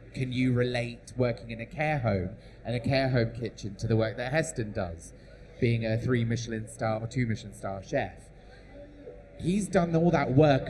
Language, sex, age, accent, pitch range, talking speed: English, male, 30-49, British, 115-145 Hz, 190 wpm